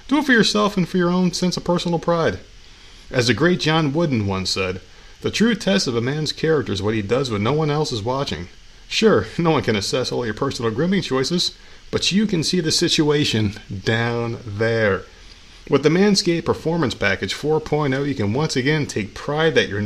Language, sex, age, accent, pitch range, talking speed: English, male, 40-59, American, 115-160 Hz, 205 wpm